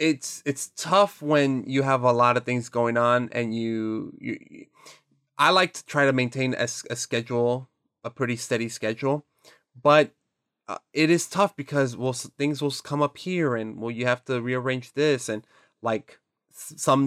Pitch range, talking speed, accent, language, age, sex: 120-145 Hz, 180 wpm, American, English, 20-39, male